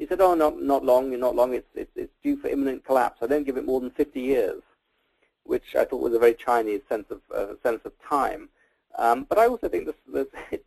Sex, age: male, 40-59